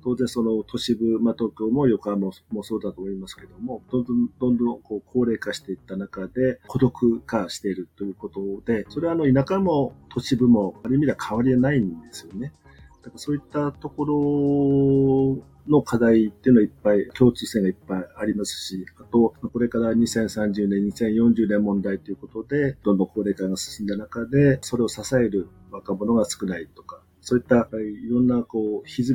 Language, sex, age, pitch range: Japanese, male, 40-59, 100-130 Hz